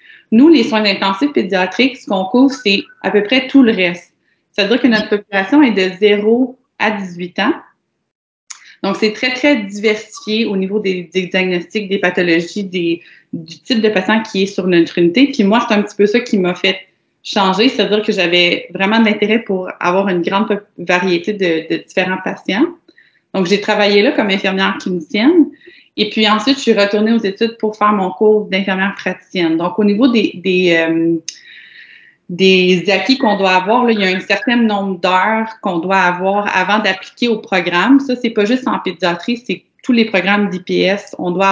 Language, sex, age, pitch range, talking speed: French, female, 30-49, 185-225 Hz, 195 wpm